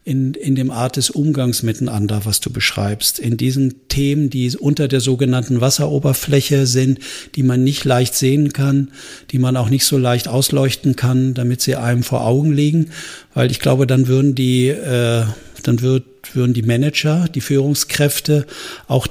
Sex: male